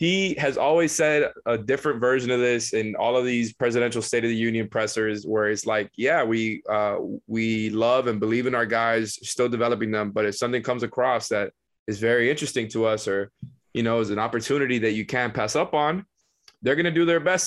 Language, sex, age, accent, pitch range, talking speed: English, male, 20-39, American, 115-155 Hz, 220 wpm